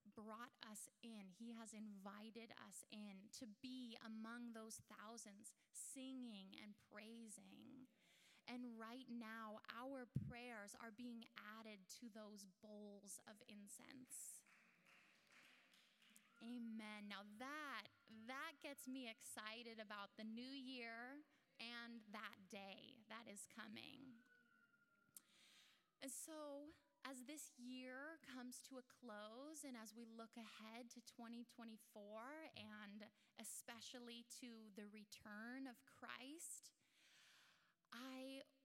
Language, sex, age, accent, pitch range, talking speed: English, female, 10-29, American, 220-255 Hz, 110 wpm